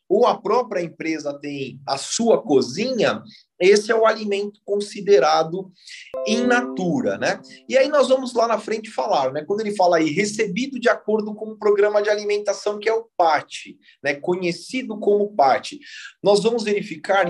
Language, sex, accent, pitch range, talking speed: Portuguese, male, Brazilian, 155-220 Hz, 165 wpm